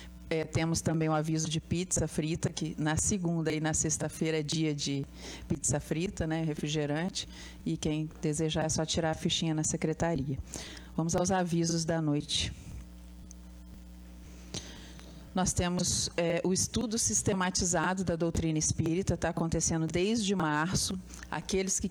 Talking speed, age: 140 wpm, 40-59